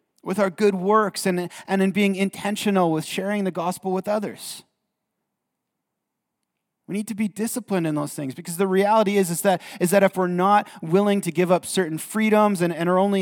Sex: male